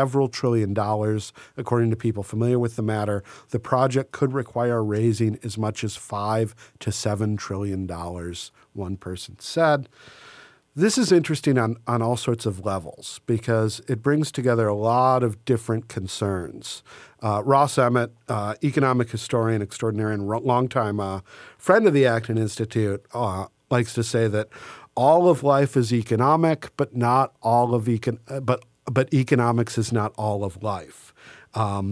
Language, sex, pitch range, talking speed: English, male, 110-145 Hz, 160 wpm